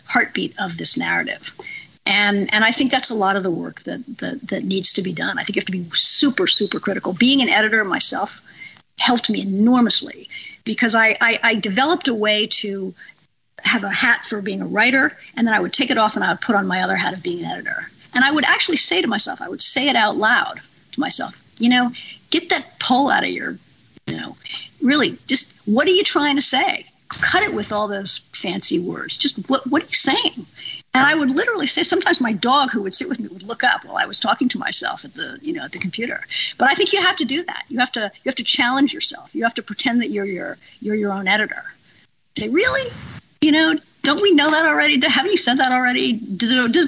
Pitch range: 210-295 Hz